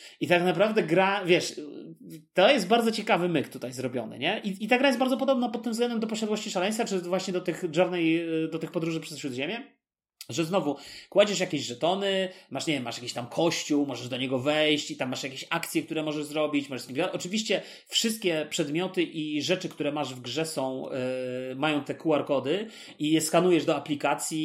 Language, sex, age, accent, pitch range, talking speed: Polish, male, 30-49, native, 145-180 Hz, 195 wpm